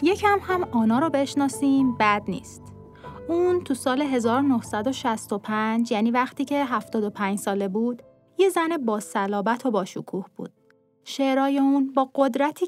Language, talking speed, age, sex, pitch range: Persian, 135 wpm, 30-49, female, 215-280 Hz